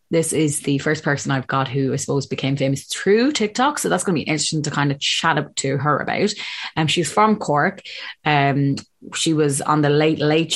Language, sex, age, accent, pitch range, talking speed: English, female, 20-39, Irish, 140-175 Hz, 225 wpm